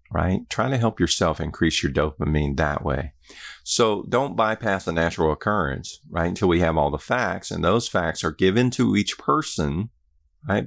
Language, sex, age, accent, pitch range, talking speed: English, male, 50-69, American, 75-90 Hz, 180 wpm